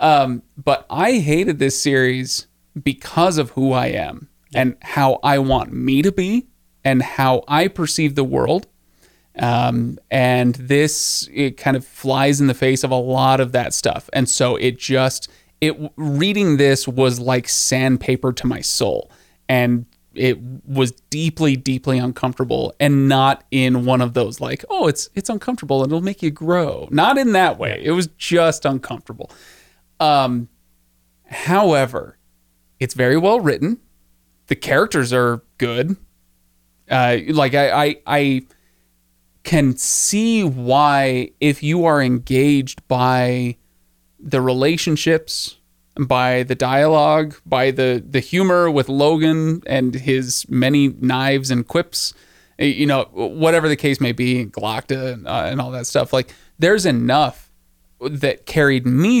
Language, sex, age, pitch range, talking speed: English, male, 30-49, 125-150 Hz, 145 wpm